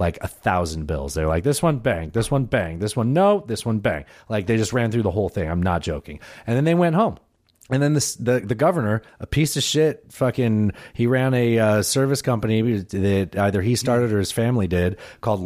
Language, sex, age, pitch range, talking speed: English, male, 30-49, 90-120 Hz, 235 wpm